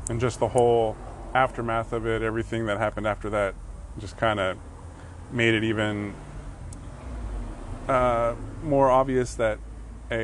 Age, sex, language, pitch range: 20-39, male, English, 105-130 Hz